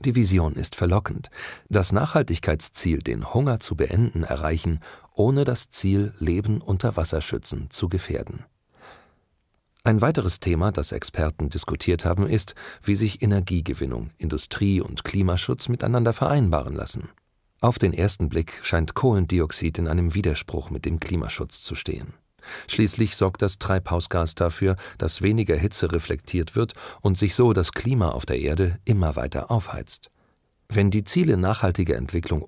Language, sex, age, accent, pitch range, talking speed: German, male, 40-59, German, 85-105 Hz, 140 wpm